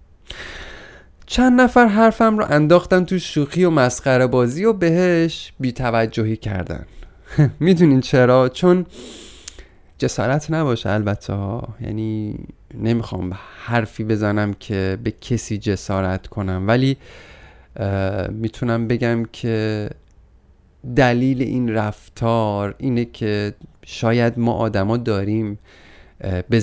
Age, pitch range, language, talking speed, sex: 30-49, 105-140 Hz, Persian, 95 wpm, male